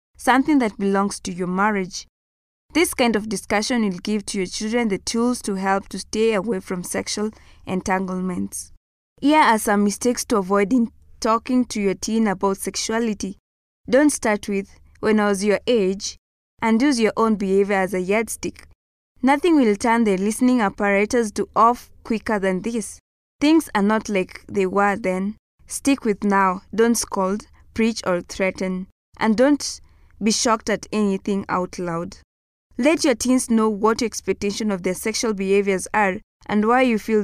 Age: 20-39